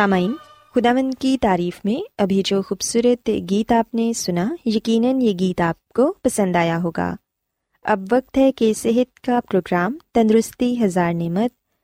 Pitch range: 175-250 Hz